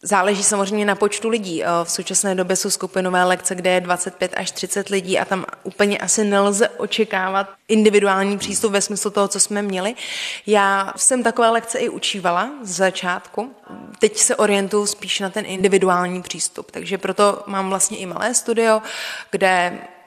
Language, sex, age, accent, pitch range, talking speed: Czech, female, 20-39, native, 185-205 Hz, 165 wpm